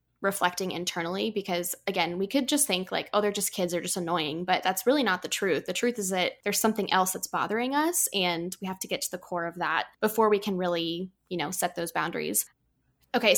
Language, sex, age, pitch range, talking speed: English, female, 10-29, 180-215 Hz, 235 wpm